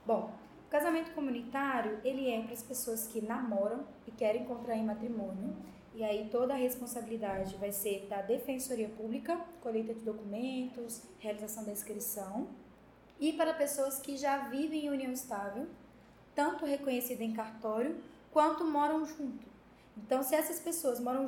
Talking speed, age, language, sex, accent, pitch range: 145 wpm, 10-29, Portuguese, female, Brazilian, 215-270 Hz